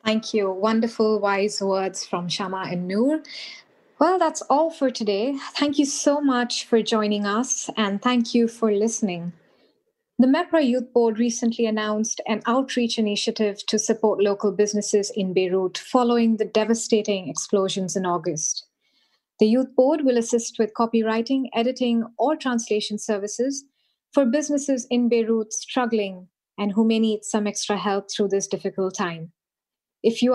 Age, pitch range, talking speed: 30-49, 205-250 Hz, 150 wpm